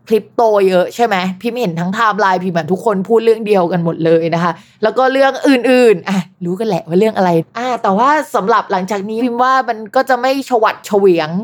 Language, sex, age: Thai, female, 20-39